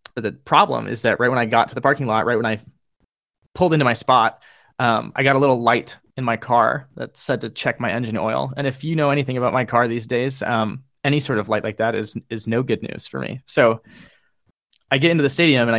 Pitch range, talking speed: 110-130 Hz, 255 wpm